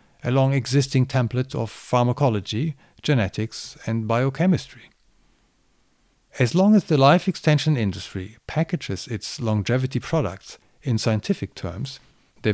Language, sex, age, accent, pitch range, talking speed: English, male, 50-69, German, 105-140 Hz, 110 wpm